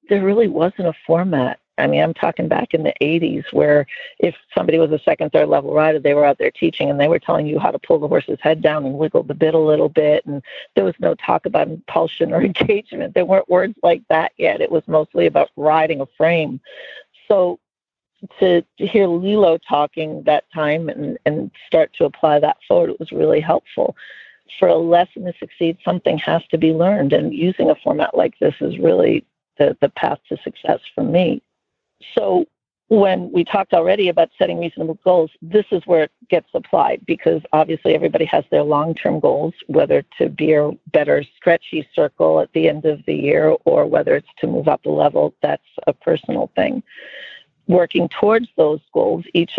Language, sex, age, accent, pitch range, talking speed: English, female, 50-69, American, 155-215 Hz, 195 wpm